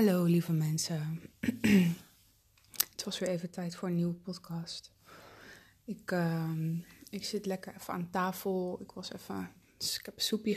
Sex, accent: female, Dutch